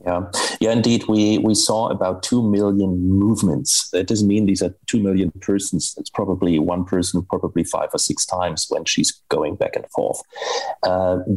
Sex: male